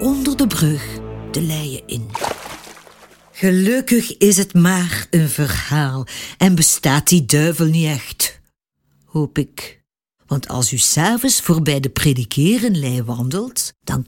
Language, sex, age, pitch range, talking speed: Dutch, female, 50-69, 135-205 Hz, 125 wpm